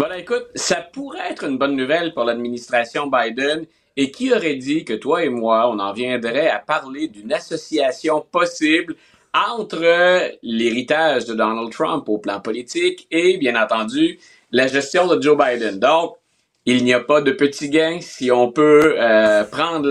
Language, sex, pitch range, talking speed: French, male, 125-165 Hz, 170 wpm